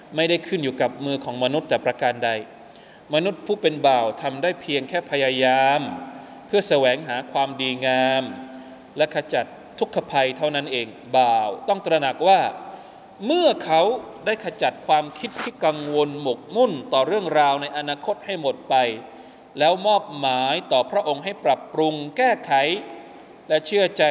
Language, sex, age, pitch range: Thai, male, 20-39, 135-190 Hz